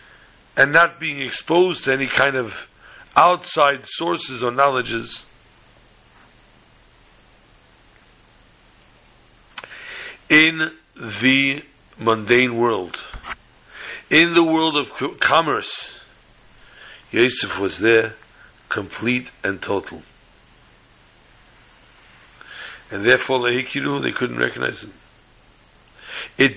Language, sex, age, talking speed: English, male, 60-79, 75 wpm